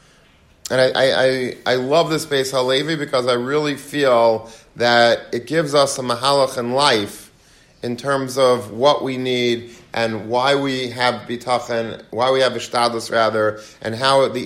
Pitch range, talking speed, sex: 110-135 Hz, 165 wpm, male